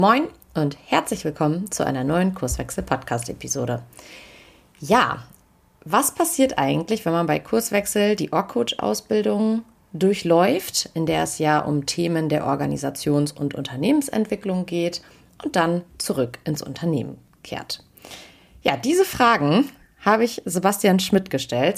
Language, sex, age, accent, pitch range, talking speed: German, female, 30-49, German, 150-195 Hz, 120 wpm